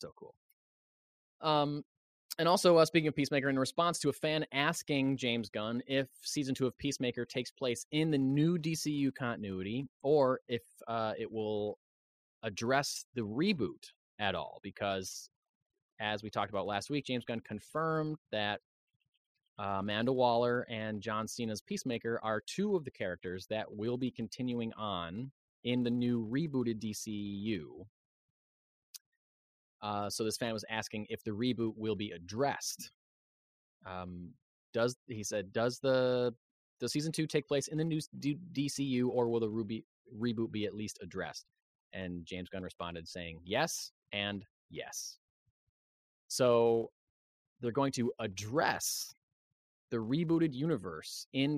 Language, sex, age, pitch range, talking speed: English, male, 20-39, 105-140 Hz, 145 wpm